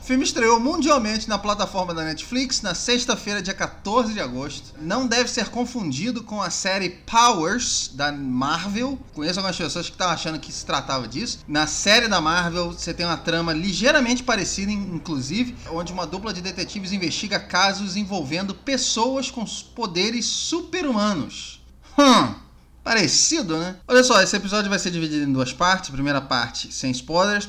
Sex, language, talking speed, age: male, Portuguese, 160 wpm, 20-39